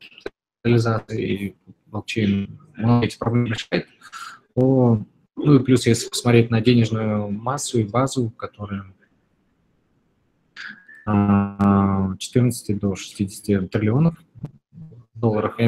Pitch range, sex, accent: 105-120 Hz, male, native